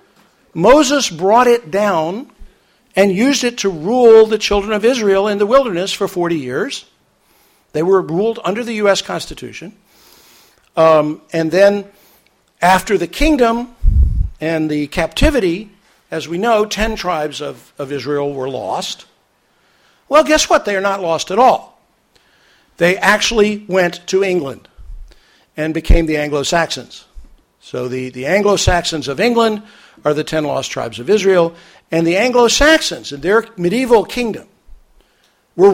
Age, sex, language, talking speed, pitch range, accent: 60-79, male, English, 140 wpm, 160-215 Hz, American